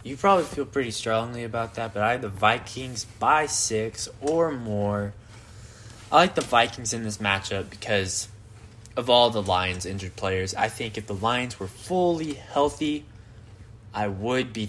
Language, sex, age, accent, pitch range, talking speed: English, male, 10-29, American, 105-120 Hz, 170 wpm